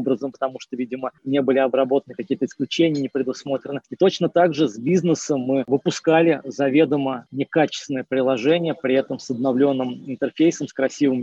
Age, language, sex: 20-39, Russian, male